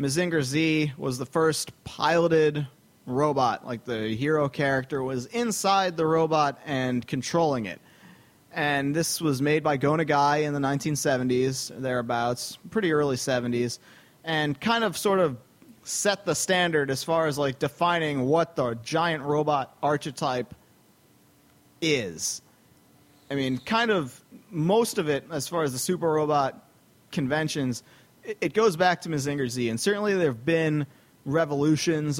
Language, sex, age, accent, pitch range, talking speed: English, male, 30-49, American, 135-165 Hz, 145 wpm